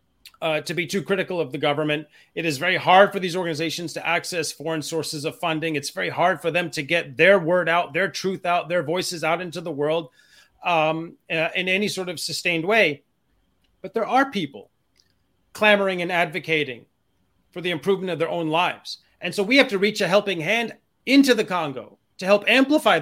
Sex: male